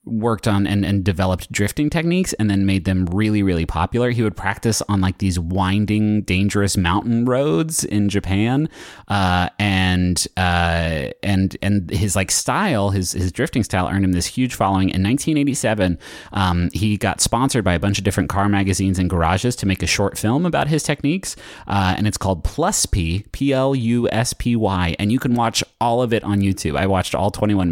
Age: 30-49